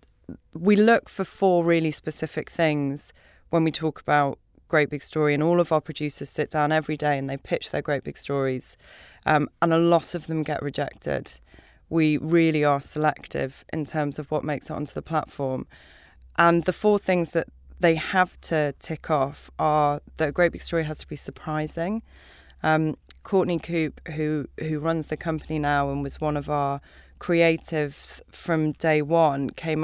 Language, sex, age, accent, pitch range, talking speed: Swedish, female, 20-39, British, 145-165 Hz, 180 wpm